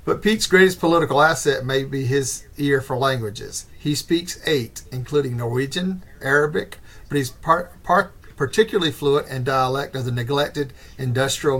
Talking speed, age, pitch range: 140 wpm, 50-69, 130-150 Hz